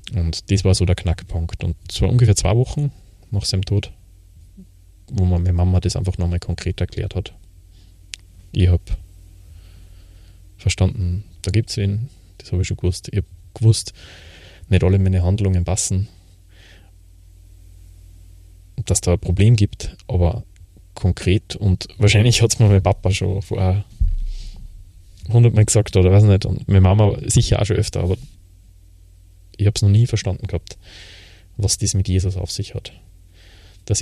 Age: 20-39